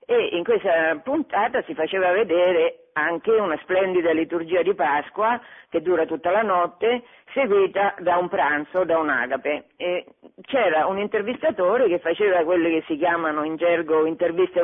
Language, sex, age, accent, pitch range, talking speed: Italian, female, 50-69, native, 165-235 Hz, 150 wpm